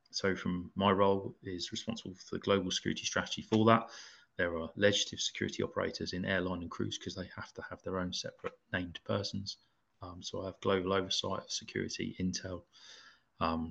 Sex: male